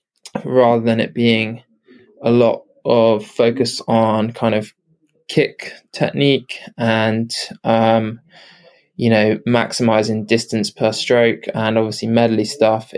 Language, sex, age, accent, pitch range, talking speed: English, male, 20-39, British, 115-140 Hz, 115 wpm